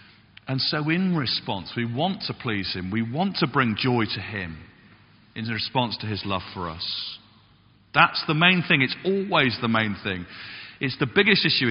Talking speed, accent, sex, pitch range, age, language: 185 wpm, British, male, 110-155 Hz, 40-59, English